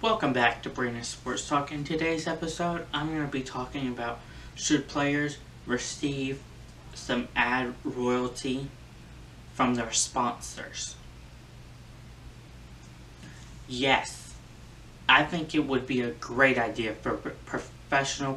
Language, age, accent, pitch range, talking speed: English, 20-39, American, 115-135 Hz, 115 wpm